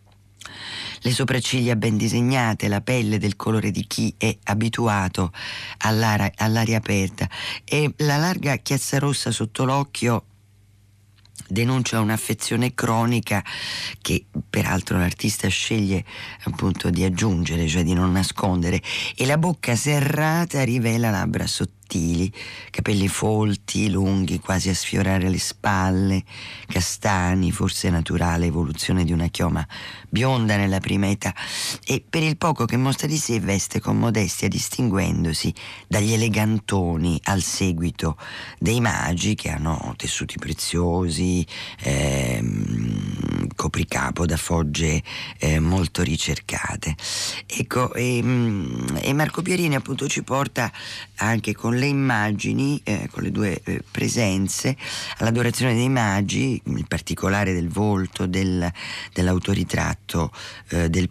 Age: 40-59